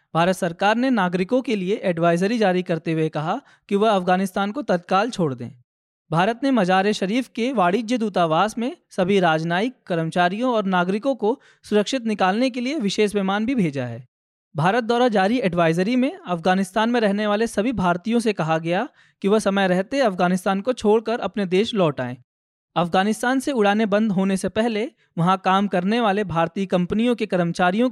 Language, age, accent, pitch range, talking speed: Hindi, 20-39, native, 175-230 Hz, 175 wpm